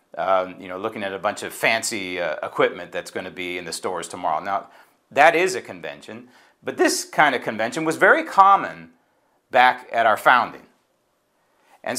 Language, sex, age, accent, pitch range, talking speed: English, male, 40-59, American, 120-150 Hz, 185 wpm